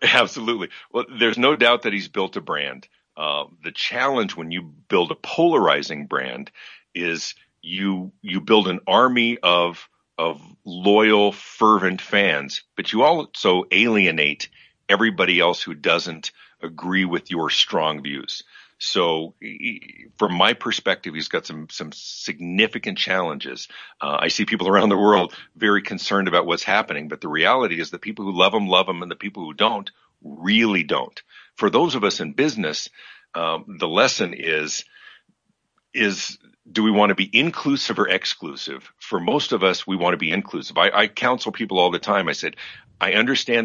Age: 50-69